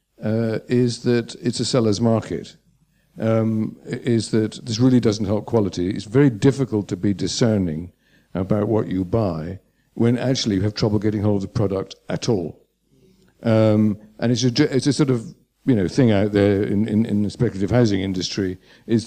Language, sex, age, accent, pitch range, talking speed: English, male, 60-79, British, 100-120 Hz, 185 wpm